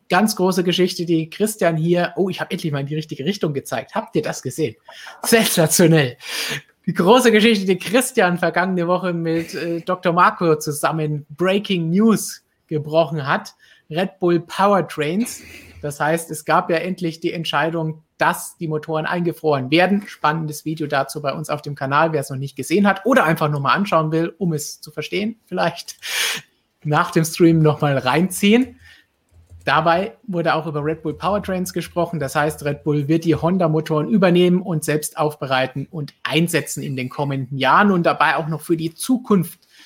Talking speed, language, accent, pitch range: 170 wpm, German, German, 150-185 Hz